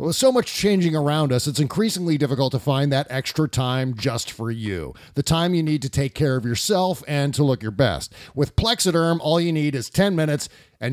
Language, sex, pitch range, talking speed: English, male, 135-180 Hz, 220 wpm